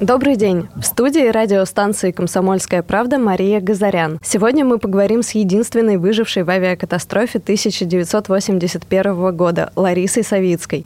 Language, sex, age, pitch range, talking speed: Russian, female, 20-39, 185-225 Hz, 115 wpm